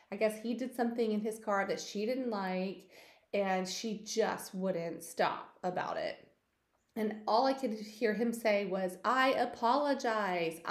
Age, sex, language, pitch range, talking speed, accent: 30-49, female, English, 200-270 Hz, 160 wpm, American